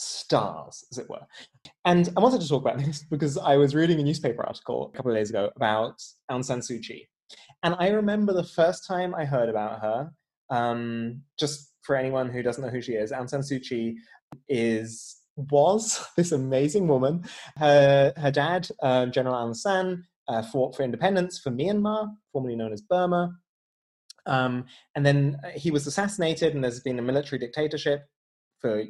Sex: male